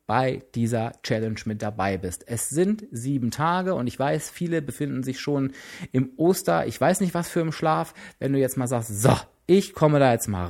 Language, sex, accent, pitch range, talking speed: German, male, German, 110-155 Hz, 210 wpm